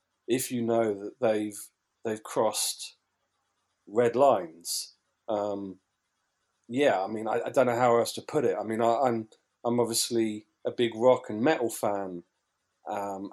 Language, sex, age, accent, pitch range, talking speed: English, male, 40-59, British, 105-125 Hz, 160 wpm